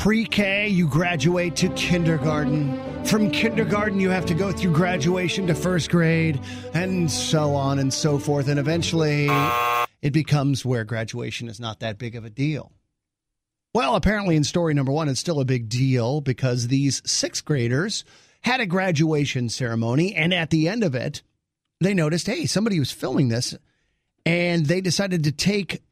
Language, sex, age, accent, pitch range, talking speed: English, male, 40-59, American, 140-180 Hz, 165 wpm